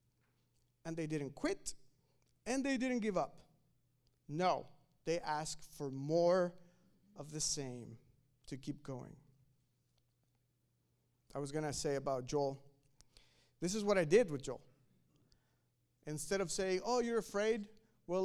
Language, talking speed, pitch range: English, 135 wpm, 140-200 Hz